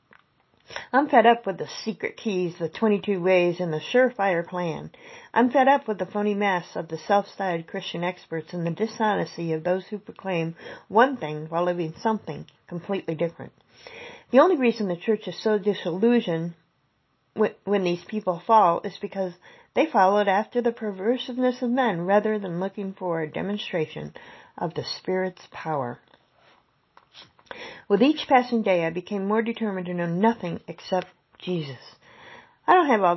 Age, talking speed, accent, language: 50-69, 160 wpm, American, English